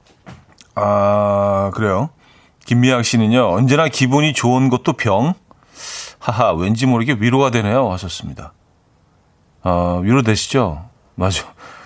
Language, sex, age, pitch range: Korean, male, 40-59, 105-145 Hz